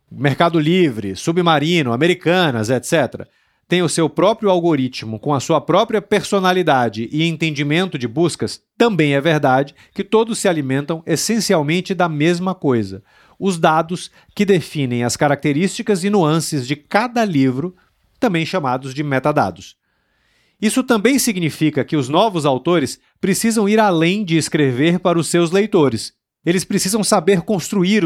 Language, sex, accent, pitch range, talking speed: Portuguese, male, Brazilian, 140-190 Hz, 140 wpm